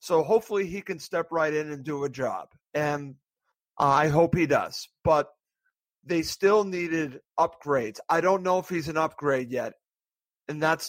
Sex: male